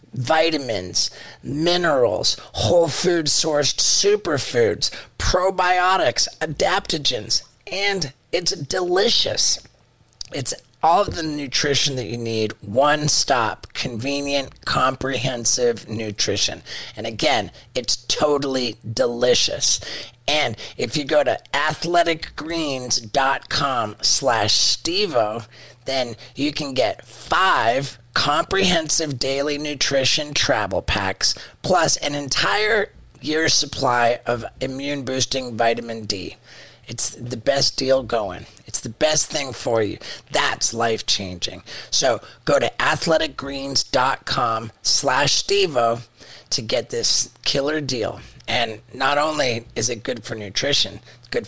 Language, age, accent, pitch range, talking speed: English, 30-49, American, 120-155 Hz, 105 wpm